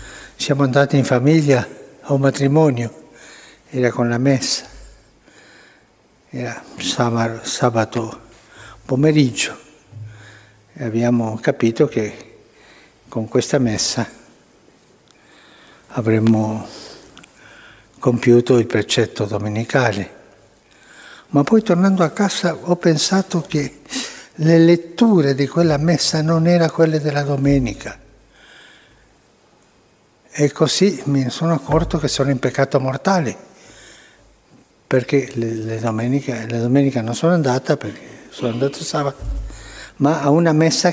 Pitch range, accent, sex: 115-150 Hz, native, male